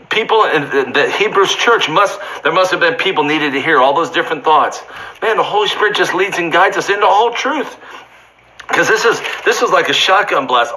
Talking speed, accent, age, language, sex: 215 wpm, American, 50-69, English, male